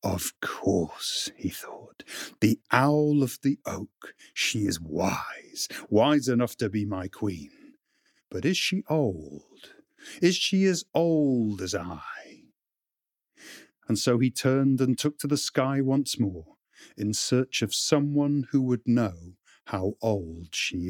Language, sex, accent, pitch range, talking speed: English, male, British, 105-155 Hz, 140 wpm